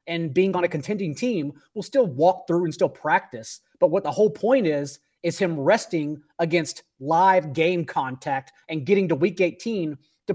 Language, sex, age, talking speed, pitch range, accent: English, male, 30-49, 185 wpm, 155-195 Hz, American